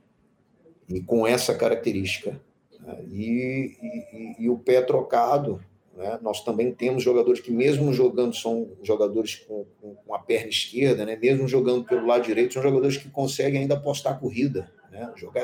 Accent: Brazilian